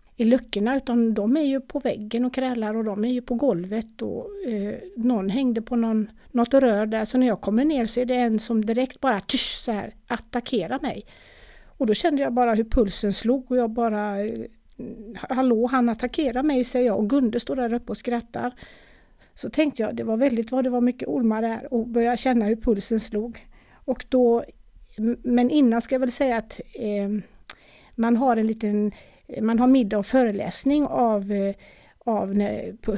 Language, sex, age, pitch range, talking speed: Swedish, female, 50-69, 225-265 Hz, 195 wpm